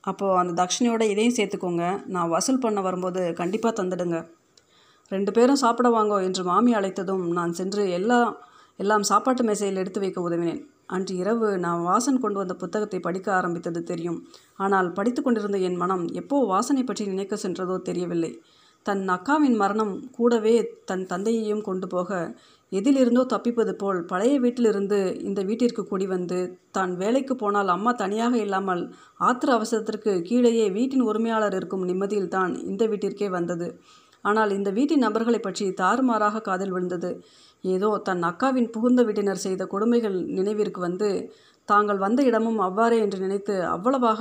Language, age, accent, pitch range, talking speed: Tamil, 30-49, native, 185-230 Hz, 140 wpm